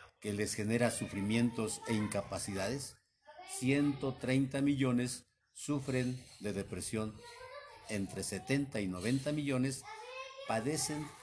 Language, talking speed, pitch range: Spanish, 90 wpm, 105-140 Hz